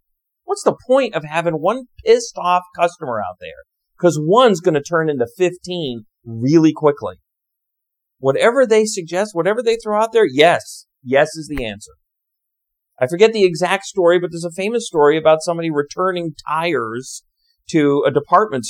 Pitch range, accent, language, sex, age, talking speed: 110-180 Hz, American, English, male, 40-59, 155 wpm